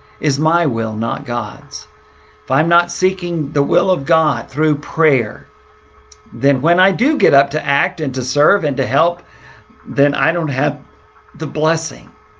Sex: male